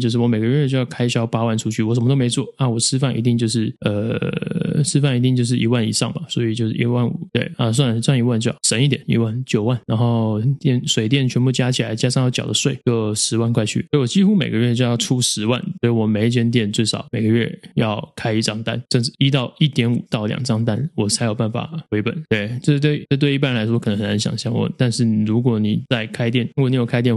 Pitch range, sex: 115-135 Hz, male